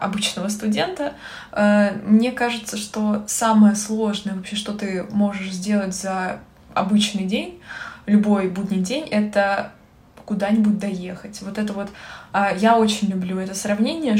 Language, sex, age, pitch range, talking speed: Russian, female, 20-39, 190-215 Hz, 125 wpm